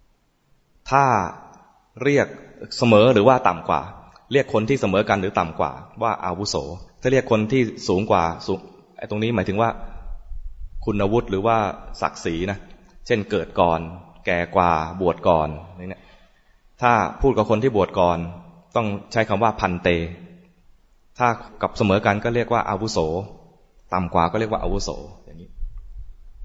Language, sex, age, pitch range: English, male, 20-39, 90-110 Hz